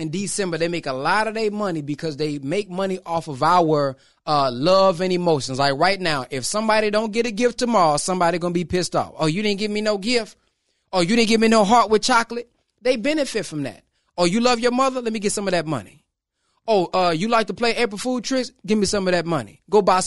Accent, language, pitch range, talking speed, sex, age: American, English, 175-225 Hz, 250 wpm, male, 20-39